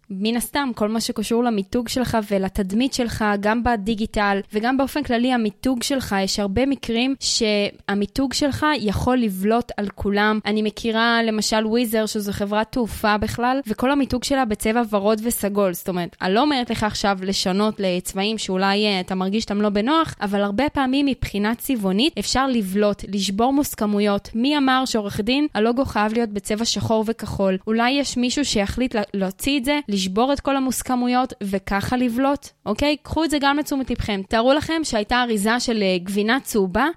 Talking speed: 155 wpm